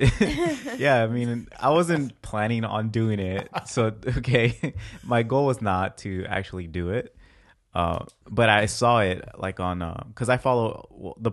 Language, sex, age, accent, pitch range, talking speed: English, male, 30-49, American, 90-110 Hz, 175 wpm